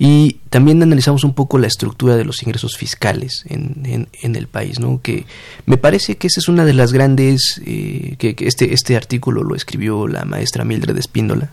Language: Spanish